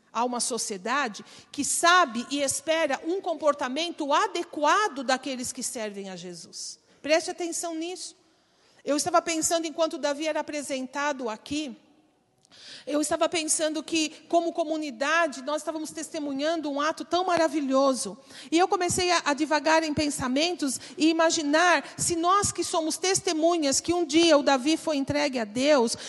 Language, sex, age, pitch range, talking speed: Portuguese, female, 40-59, 275-340 Hz, 145 wpm